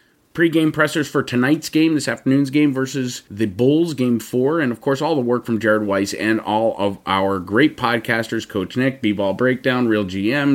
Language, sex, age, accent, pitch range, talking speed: English, male, 30-49, American, 105-135 Hz, 195 wpm